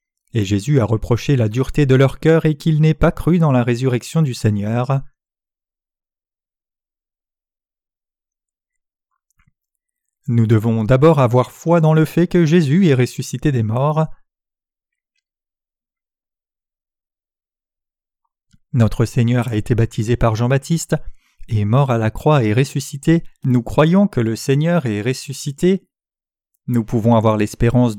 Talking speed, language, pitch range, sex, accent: 125 wpm, French, 120-165 Hz, male, French